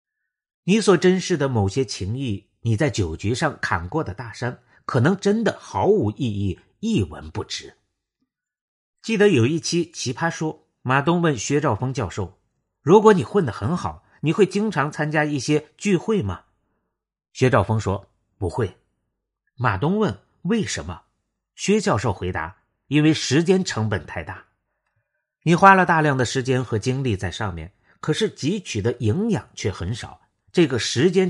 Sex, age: male, 50-69